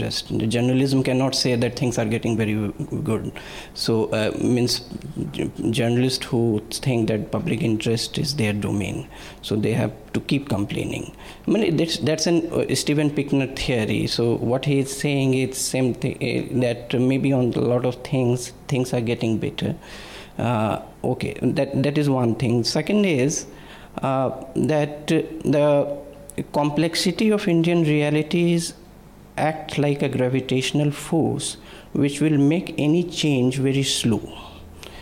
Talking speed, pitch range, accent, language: 150 wpm, 125-155 Hz, Indian, English